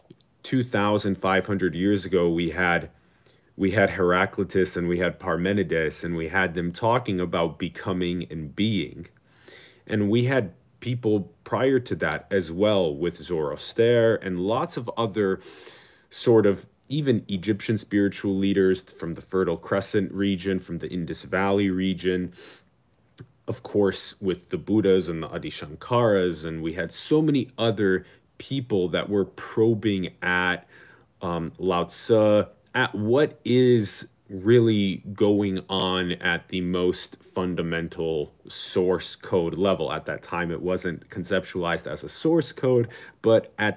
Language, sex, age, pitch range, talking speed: English, male, 40-59, 90-115 Hz, 135 wpm